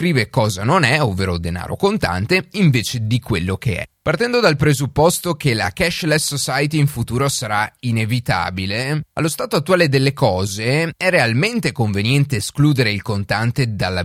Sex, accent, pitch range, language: male, native, 110-165 Hz, Italian